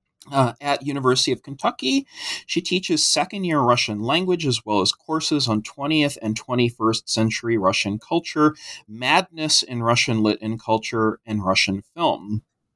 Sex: male